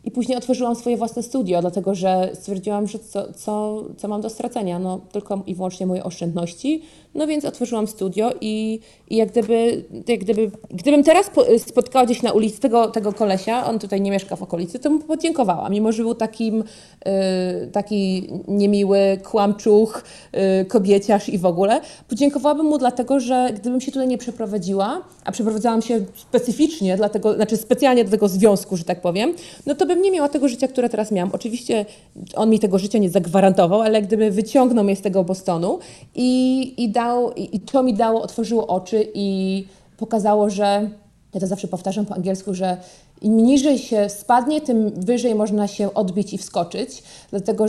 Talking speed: 175 wpm